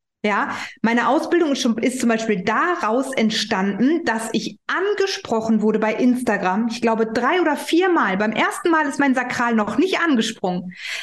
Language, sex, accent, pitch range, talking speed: German, female, German, 225-305 Hz, 165 wpm